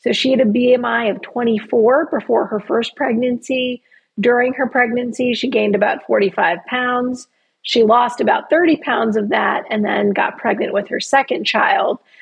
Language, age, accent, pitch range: English, 40-59, American, 215-270 Hz